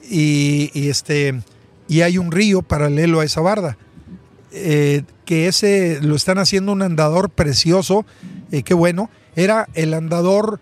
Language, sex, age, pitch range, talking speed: Spanish, male, 50-69, 150-190 Hz, 145 wpm